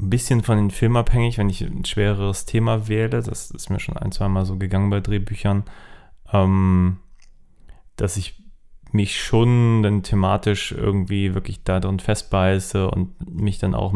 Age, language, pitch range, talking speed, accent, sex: 30-49, German, 95-105 Hz, 155 wpm, German, male